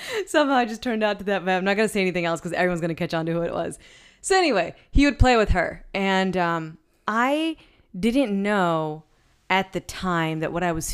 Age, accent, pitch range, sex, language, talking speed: 20-39, American, 160-200 Hz, female, English, 240 wpm